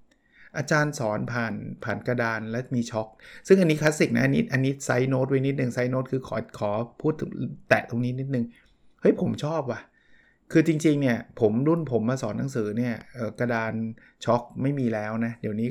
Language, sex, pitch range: Thai, male, 115-150 Hz